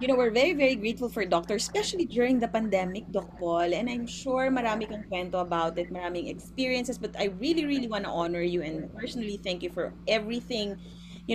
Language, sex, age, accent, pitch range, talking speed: Filipino, female, 20-39, native, 175-240 Hz, 205 wpm